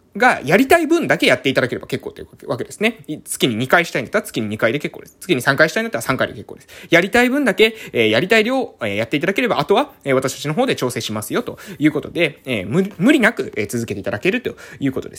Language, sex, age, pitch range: Japanese, male, 20-39, 135-205 Hz